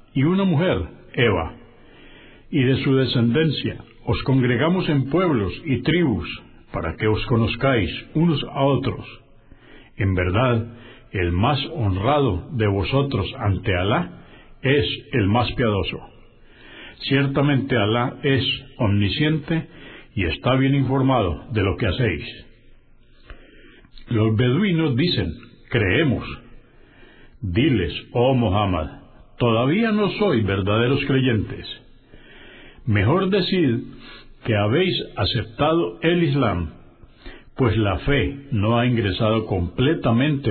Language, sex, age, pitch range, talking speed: Spanish, male, 60-79, 105-140 Hz, 105 wpm